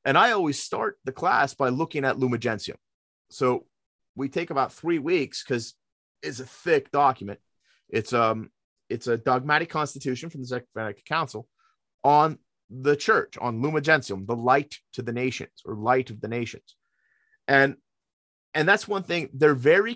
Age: 30-49